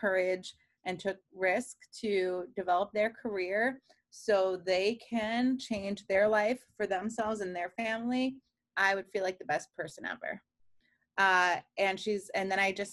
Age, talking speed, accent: 30-49, 160 wpm, American